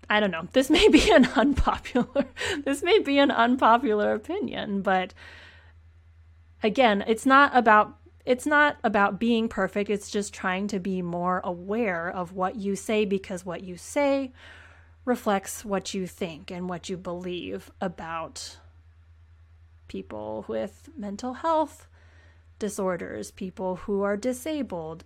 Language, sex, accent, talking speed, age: English, female, American, 135 wpm, 30-49